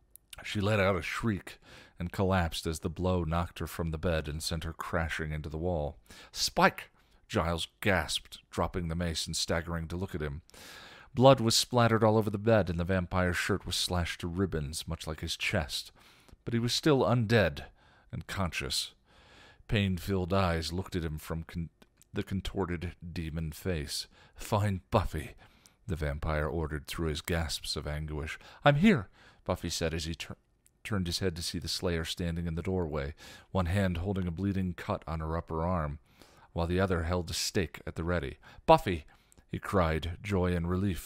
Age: 40-59